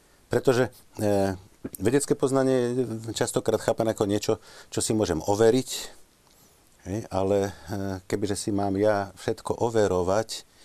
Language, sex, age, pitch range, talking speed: Slovak, male, 40-59, 95-105 Hz, 100 wpm